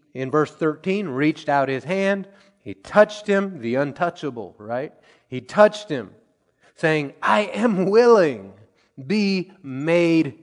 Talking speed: 125 wpm